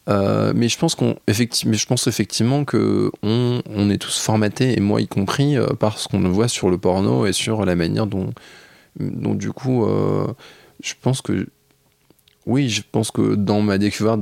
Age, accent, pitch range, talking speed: 20-39, French, 95-120 Hz, 195 wpm